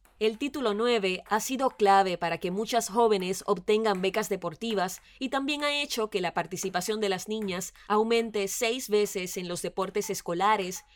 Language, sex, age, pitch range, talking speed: Spanish, female, 20-39, 185-230 Hz, 165 wpm